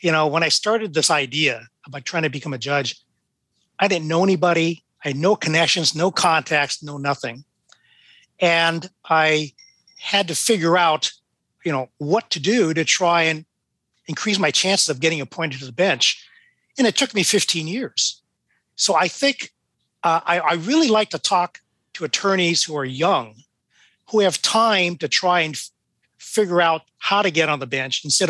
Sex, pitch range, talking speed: male, 150-190 Hz, 180 wpm